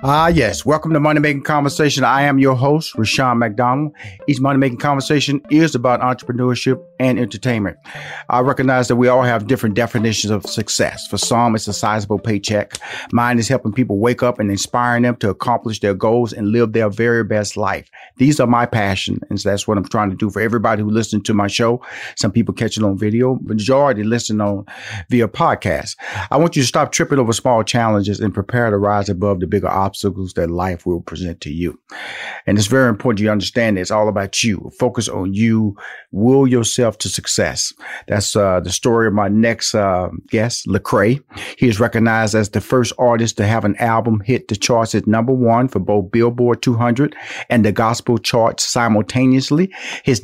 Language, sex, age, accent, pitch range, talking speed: English, male, 40-59, American, 105-125 Hz, 195 wpm